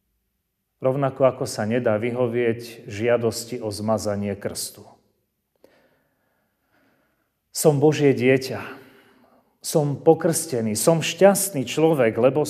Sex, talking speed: male, 85 wpm